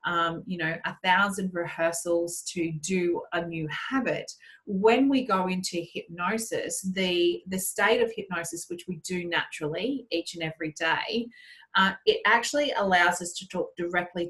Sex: female